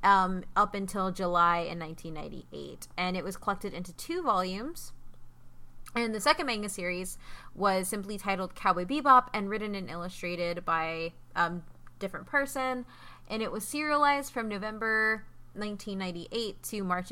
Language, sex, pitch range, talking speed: English, female, 180-220 Hz, 140 wpm